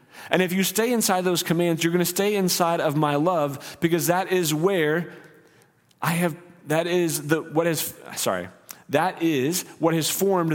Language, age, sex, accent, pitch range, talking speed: English, 30-49, male, American, 150-180 Hz, 180 wpm